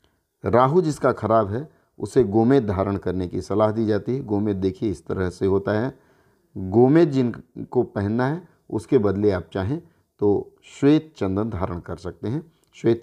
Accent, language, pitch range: native, Hindi, 100-130 Hz